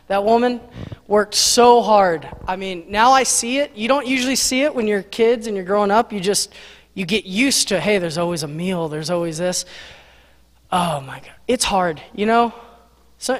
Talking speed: 200 wpm